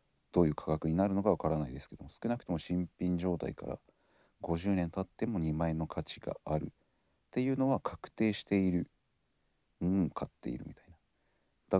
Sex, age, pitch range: male, 40-59, 80-100 Hz